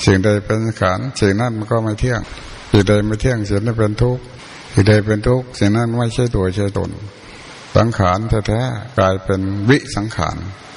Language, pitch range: Thai, 100-120 Hz